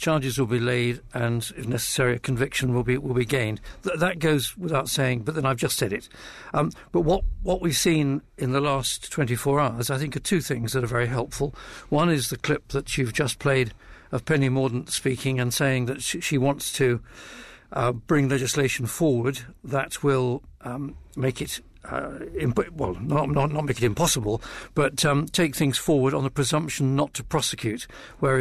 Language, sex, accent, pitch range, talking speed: English, male, British, 125-145 Hz, 200 wpm